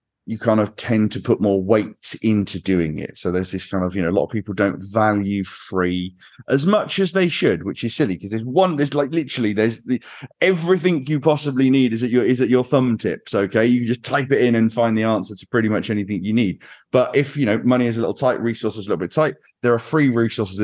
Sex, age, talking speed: male, 30-49, 255 wpm